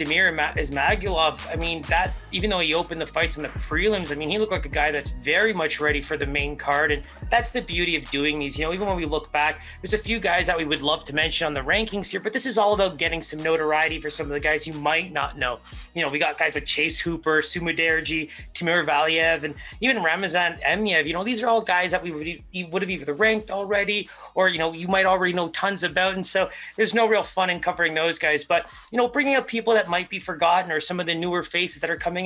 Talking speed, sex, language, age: 260 wpm, male, English, 30-49